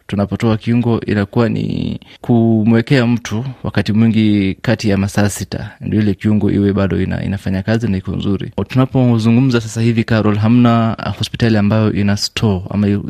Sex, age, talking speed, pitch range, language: male, 20-39, 155 wpm, 100-115 Hz, Swahili